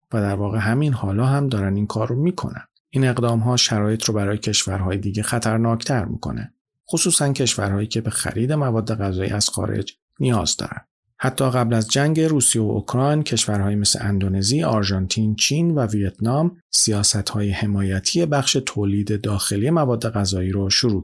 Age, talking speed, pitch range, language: 40-59, 155 wpm, 100-125 Hz, Persian